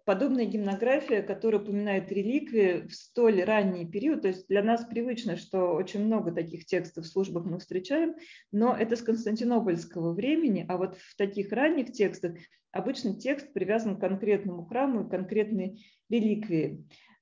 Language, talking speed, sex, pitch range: Russian, 150 wpm, female, 180-220 Hz